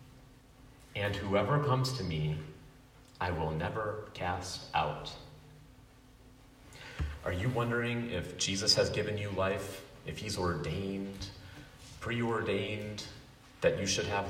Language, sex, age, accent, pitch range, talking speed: English, male, 40-59, American, 95-130 Hz, 115 wpm